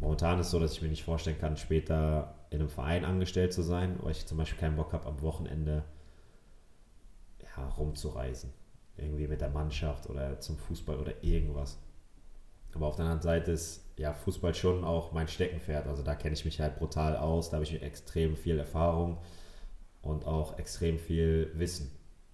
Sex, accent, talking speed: male, German, 185 wpm